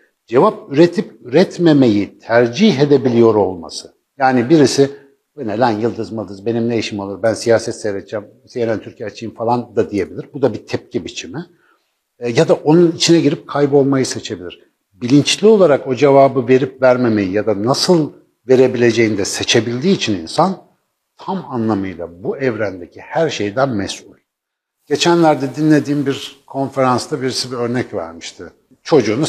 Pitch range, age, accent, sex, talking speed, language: 115-150 Hz, 60-79, native, male, 140 wpm, Turkish